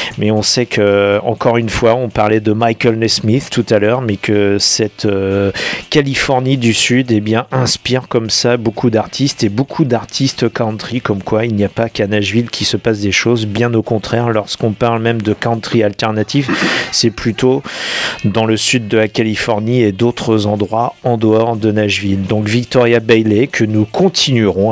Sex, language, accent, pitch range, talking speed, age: male, French, French, 105-125 Hz, 185 wpm, 40-59